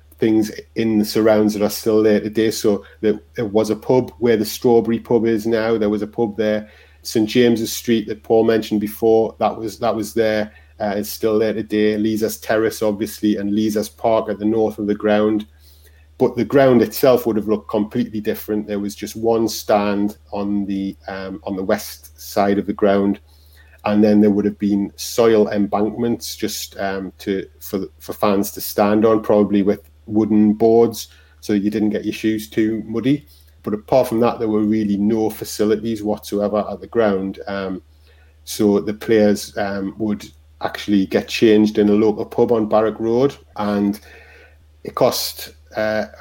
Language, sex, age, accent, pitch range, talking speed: English, male, 30-49, British, 100-110 Hz, 185 wpm